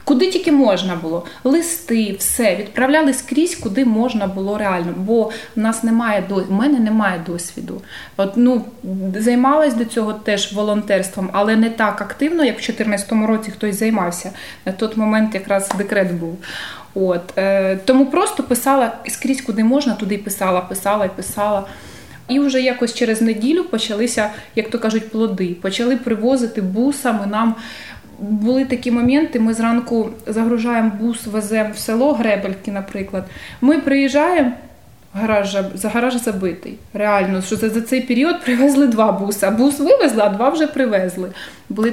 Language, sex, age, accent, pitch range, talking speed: Ukrainian, female, 20-39, native, 200-250 Hz, 155 wpm